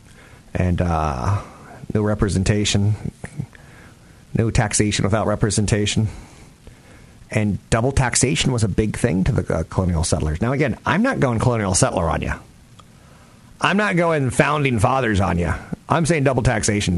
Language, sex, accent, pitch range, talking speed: English, male, American, 90-125 Hz, 140 wpm